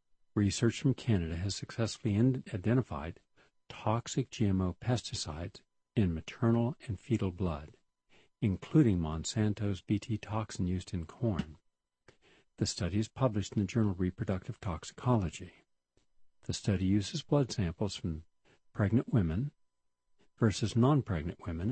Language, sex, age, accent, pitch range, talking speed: English, male, 50-69, American, 90-120 Hz, 115 wpm